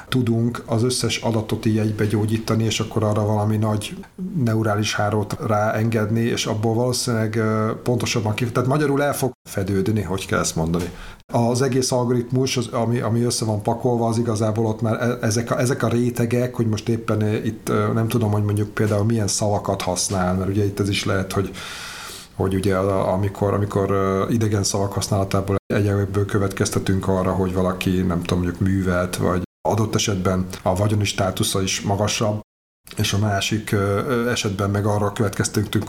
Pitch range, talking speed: 95-115 Hz, 160 wpm